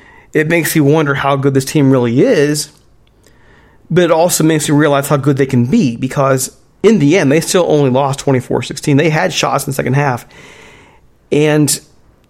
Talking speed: 185 wpm